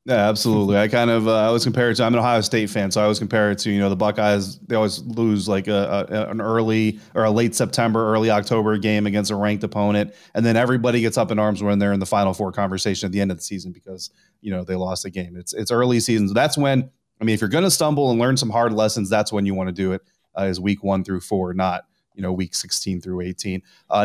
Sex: male